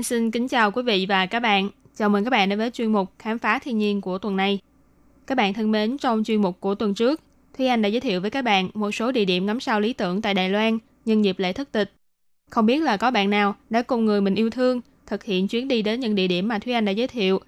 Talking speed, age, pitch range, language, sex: 285 wpm, 20-39, 195-240 Hz, Vietnamese, female